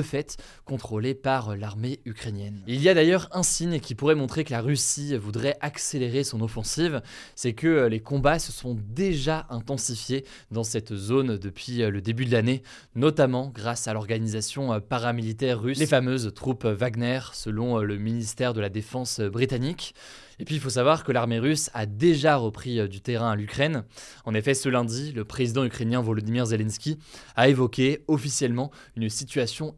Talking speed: 170 wpm